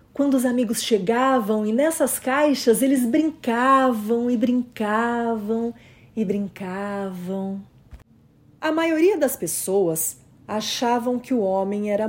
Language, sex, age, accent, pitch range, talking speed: Portuguese, female, 40-59, Brazilian, 180-245 Hz, 110 wpm